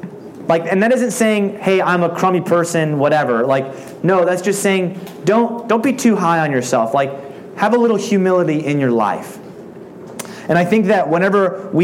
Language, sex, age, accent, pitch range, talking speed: English, male, 30-49, American, 140-190 Hz, 190 wpm